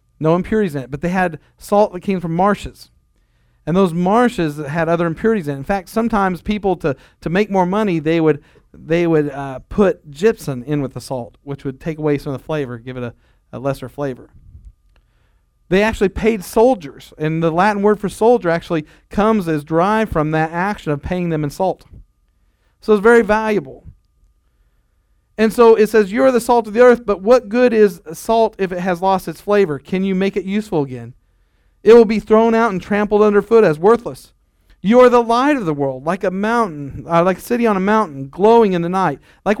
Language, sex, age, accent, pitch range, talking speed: English, male, 40-59, American, 145-215 Hz, 210 wpm